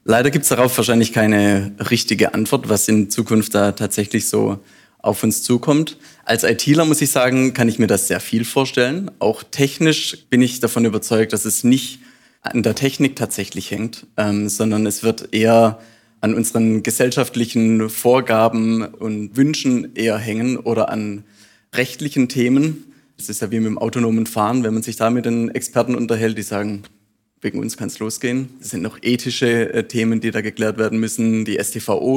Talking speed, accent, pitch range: 175 wpm, German, 110-125 Hz